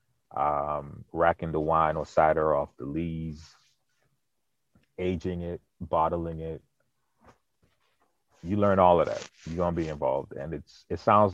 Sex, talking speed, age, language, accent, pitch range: male, 140 wpm, 30-49, English, American, 75-90 Hz